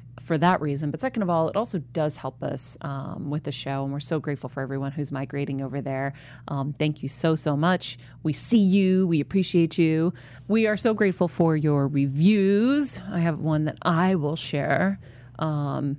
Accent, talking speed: American, 200 wpm